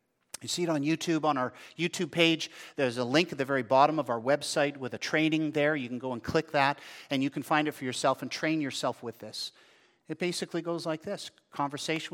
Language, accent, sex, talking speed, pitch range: English, American, male, 230 wpm, 140-180 Hz